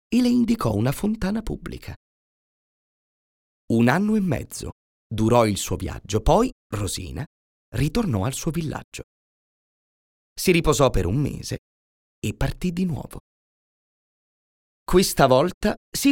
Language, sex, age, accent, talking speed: Italian, male, 30-49, native, 120 wpm